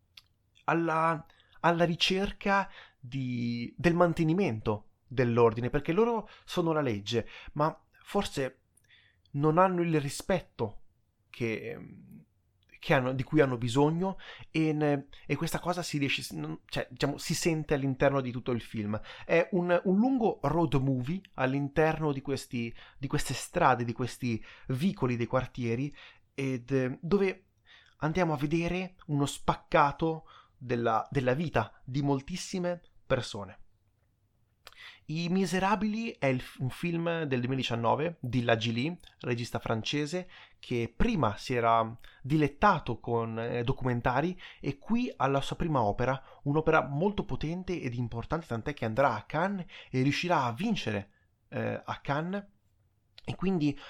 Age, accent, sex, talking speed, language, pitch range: 30-49, native, male, 130 wpm, Italian, 120-170 Hz